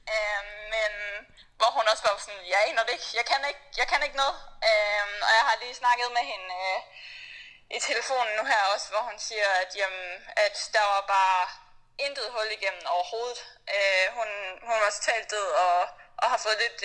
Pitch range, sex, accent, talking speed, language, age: 195-240 Hz, female, native, 190 wpm, Danish, 20-39